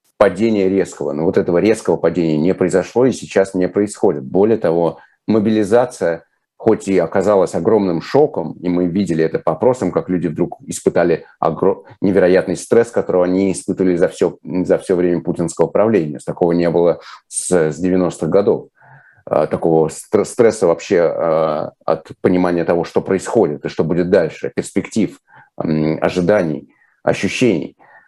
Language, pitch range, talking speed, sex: Russian, 80-100 Hz, 135 wpm, male